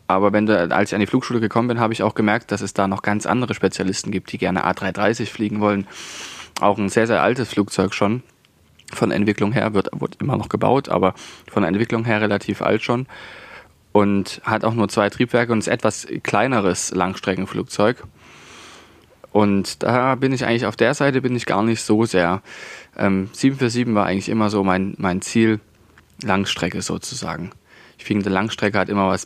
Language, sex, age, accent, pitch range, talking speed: German, male, 20-39, German, 95-115 Hz, 185 wpm